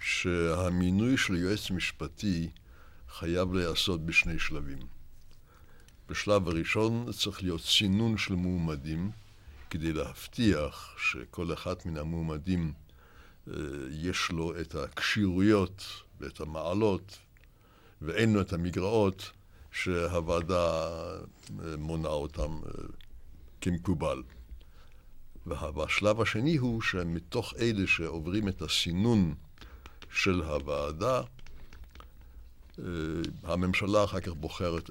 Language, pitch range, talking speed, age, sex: Hebrew, 80-100 Hz, 85 wpm, 60-79, male